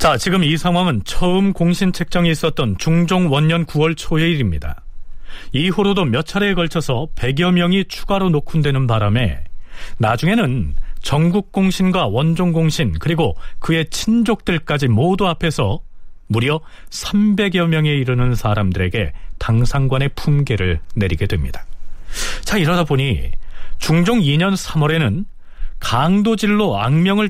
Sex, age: male, 40-59